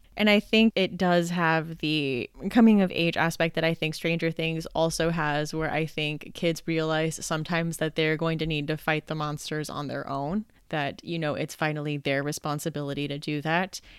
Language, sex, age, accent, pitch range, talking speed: English, female, 20-39, American, 155-195 Hz, 195 wpm